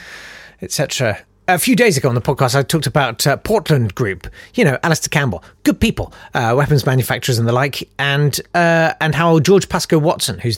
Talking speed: 195 wpm